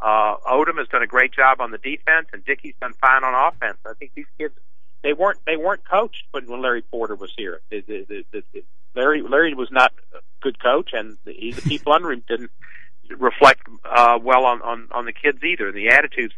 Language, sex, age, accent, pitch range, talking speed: English, male, 60-79, American, 125-200 Hz, 225 wpm